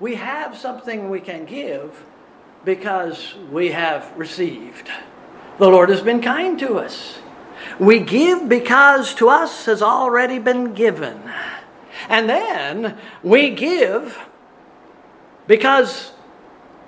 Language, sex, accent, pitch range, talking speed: English, male, American, 190-280 Hz, 110 wpm